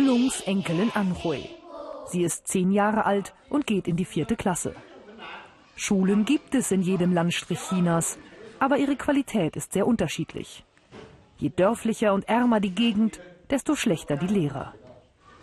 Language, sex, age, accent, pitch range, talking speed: German, female, 40-59, German, 175-245 Hz, 135 wpm